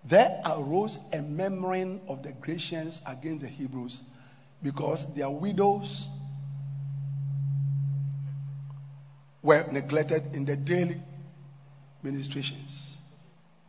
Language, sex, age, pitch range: English, male, 50-69, 140-180 Hz